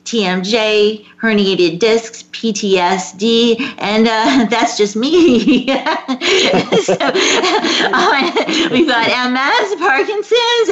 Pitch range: 190-250 Hz